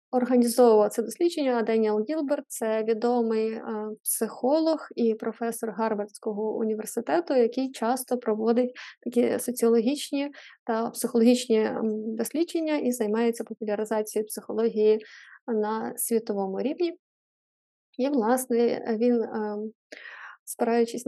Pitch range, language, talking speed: 225-265 Hz, Ukrainian, 95 wpm